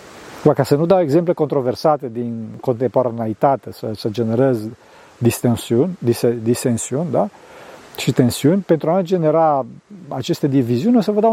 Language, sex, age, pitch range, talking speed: Romanian, male, 50-69, 130-180 Hz, 145 wpm